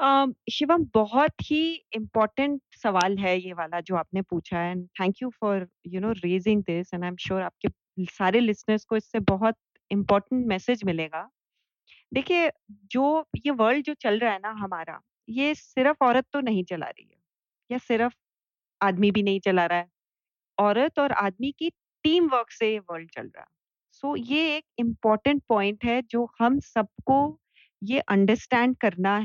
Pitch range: 205-275 Hz